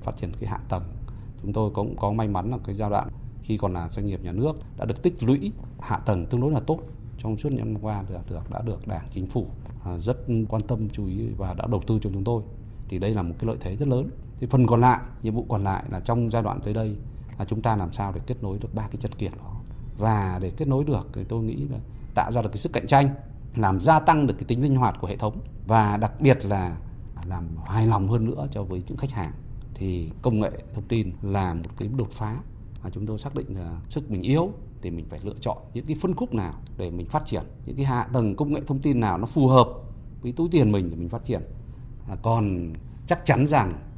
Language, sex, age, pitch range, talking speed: Vietnamese, male, 20-39, 100-125 Hz, 260 wpm